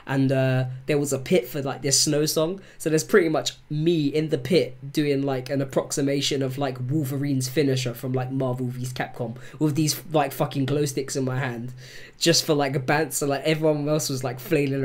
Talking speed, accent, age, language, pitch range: 215 wpm, British, 20-39, English, 125-145 Hz